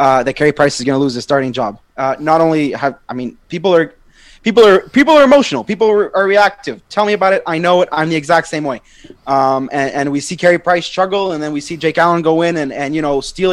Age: 20-39